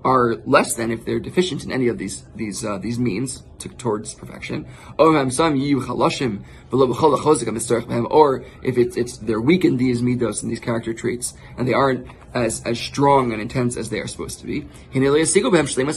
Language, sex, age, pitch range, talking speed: English, male, 20-39, 120-145 Hz, 165 wpm